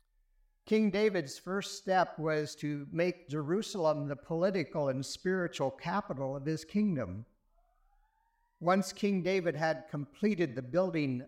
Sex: male